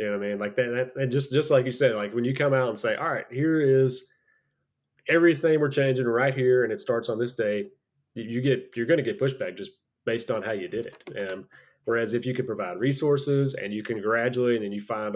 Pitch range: 115-140 Hz